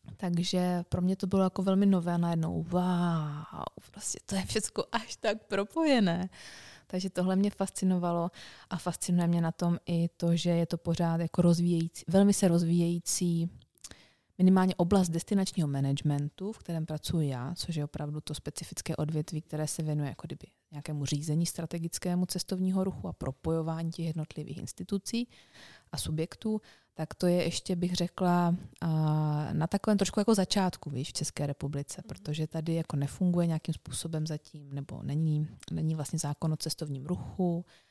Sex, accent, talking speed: female, native, 155 wpm